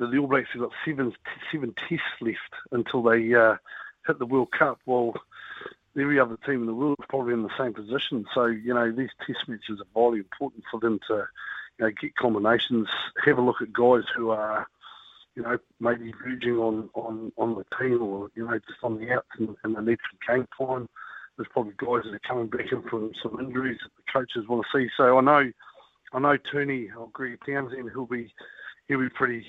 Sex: male